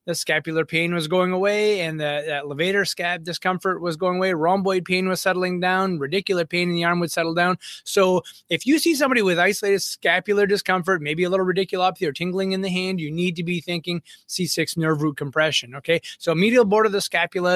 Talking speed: 210 wpm